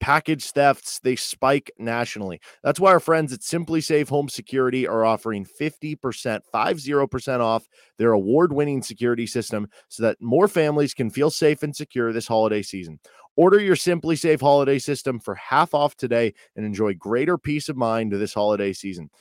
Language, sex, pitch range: English, male, 115-145 Hz